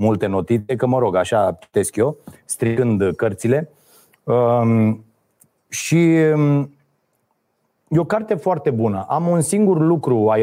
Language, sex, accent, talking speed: Romanian, male, native, 120 wpm